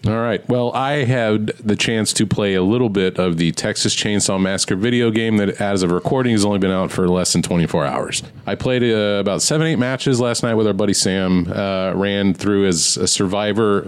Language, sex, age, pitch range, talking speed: English, male, 30-49, 95-120 Hz, 220 wpm